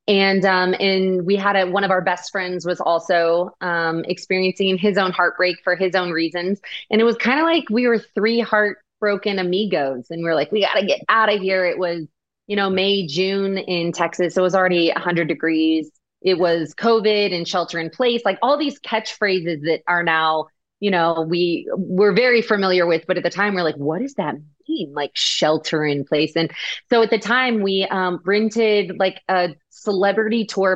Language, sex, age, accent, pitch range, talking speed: English, female, 20-39, American, 170-210 Hz, 205 wpm